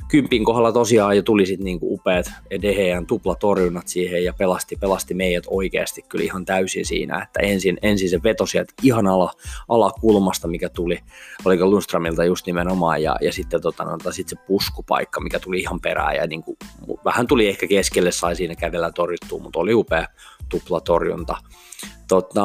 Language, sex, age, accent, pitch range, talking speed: Finnish, male, 20-39, native, 90-105 Hz, 165 wpm